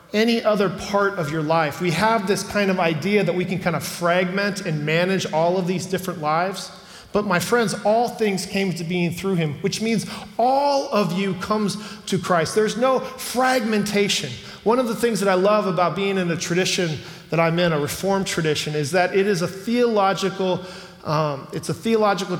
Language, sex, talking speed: English, male, 200 wpm